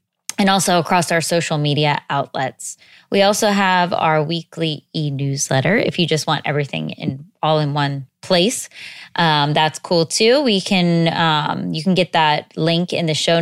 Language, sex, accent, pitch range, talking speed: English, female, American, 155-185 Hz, 170 wpm